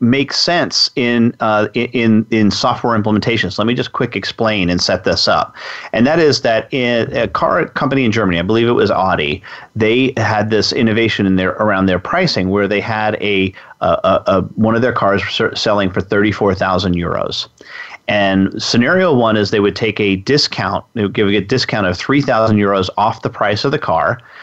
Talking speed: 190 wpm